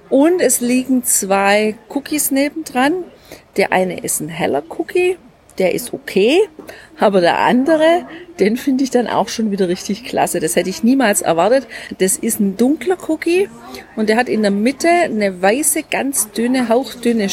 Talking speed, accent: 165 wpm, German